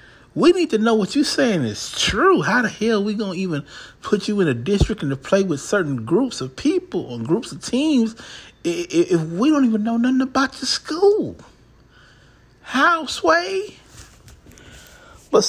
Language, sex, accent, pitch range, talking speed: English, male, American, 140-220 Hz, 180 wpm